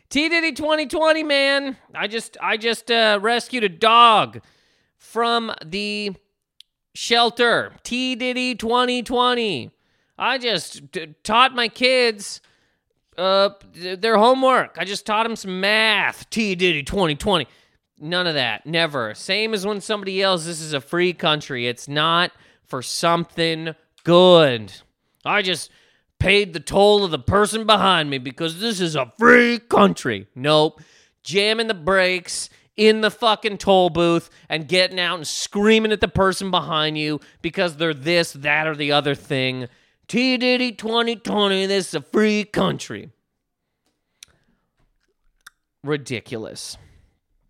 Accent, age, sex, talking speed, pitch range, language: American, 30-49, male, 130 wpm, 155-225 Hz, English